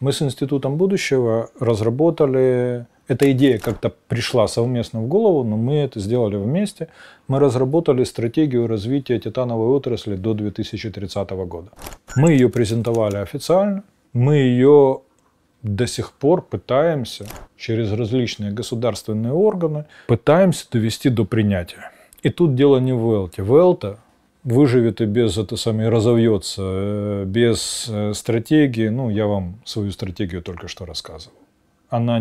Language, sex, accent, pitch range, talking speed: Russian, male, native, 105-130 Hz, 130 wpm